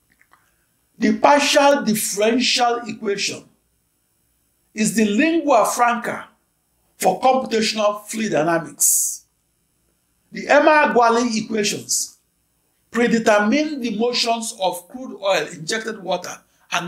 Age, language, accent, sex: 60-79, English, Nigerian, male